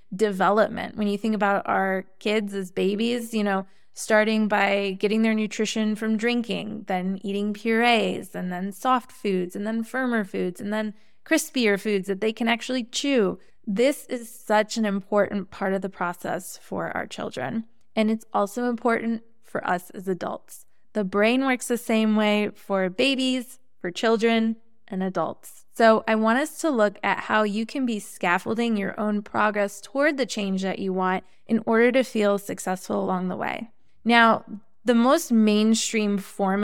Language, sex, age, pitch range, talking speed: English, female, 20-39, 200-230 Hz, 170 wpm